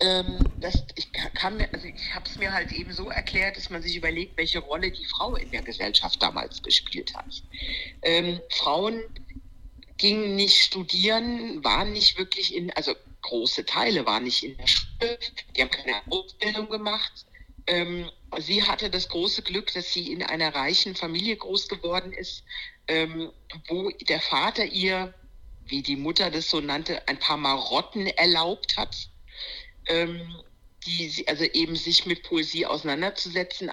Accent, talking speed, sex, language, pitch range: German, 145 wpm, female, German, 155-195 Hz